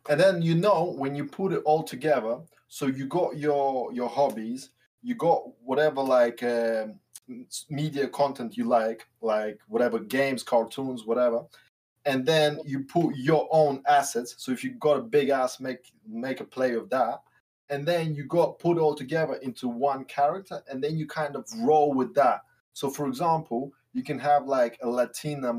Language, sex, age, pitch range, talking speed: English, male, 20-39, 120-150 Hz, 180 wpm